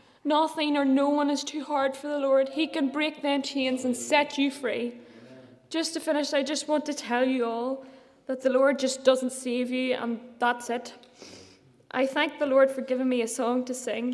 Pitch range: 230-275 Hz